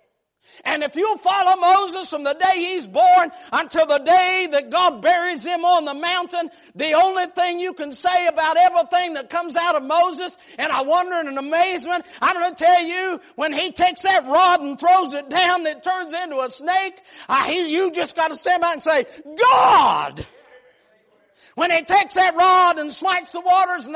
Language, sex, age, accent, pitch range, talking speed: English, male, 50-69, American, 320-405 Hz, 195 wpm